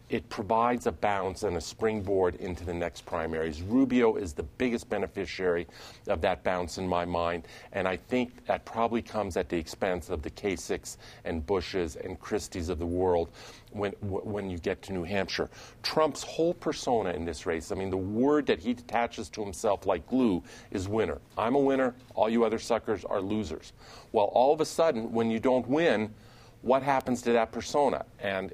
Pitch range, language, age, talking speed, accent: 95-120 Hz, English, 50-69, 190 wpm, American